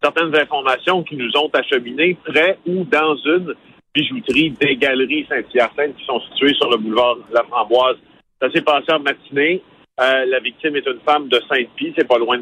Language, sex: French, male